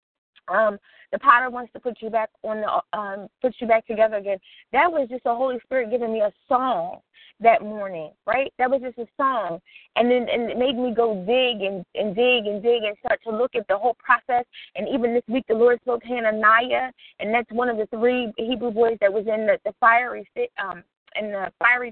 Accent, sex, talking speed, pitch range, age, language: American, female, 225 wpm, 220-265 Hz, 20-39, English